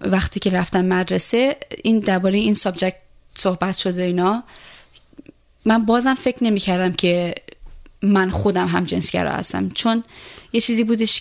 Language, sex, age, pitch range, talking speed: Persian, female, 20-39, 175-200 Hz, 140 wpm